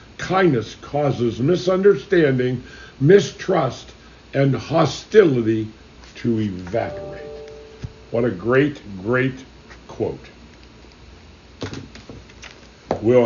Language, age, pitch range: English, 60-79, 120-160 Hz